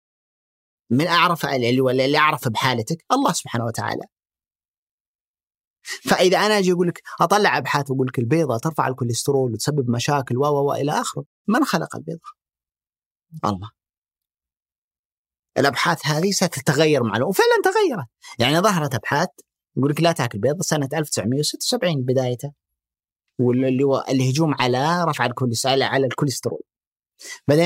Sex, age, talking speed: male, 30-49, 125 wpm